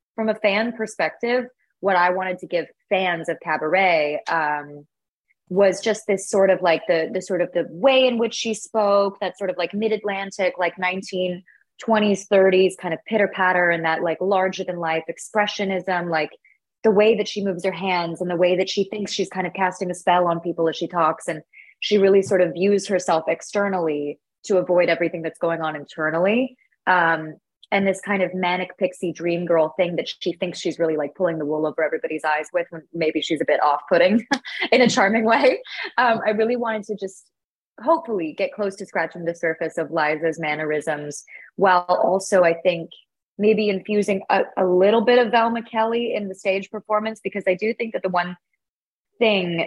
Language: English